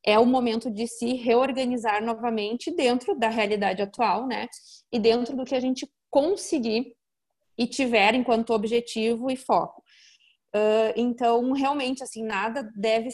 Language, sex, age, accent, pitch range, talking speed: Portuguese, female, 20-39, Brazilian, 215-250 Hz, 135 wpm